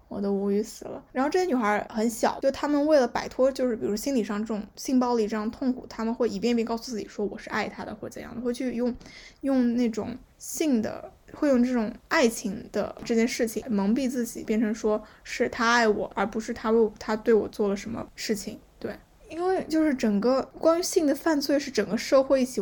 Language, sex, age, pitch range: Chinese, female, 10-29, 215-255 Hz